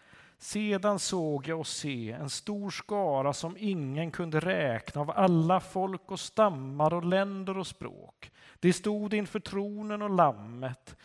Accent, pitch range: native, 145-190 Hz